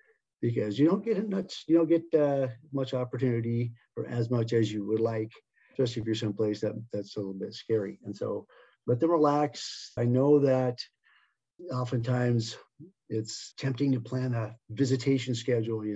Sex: male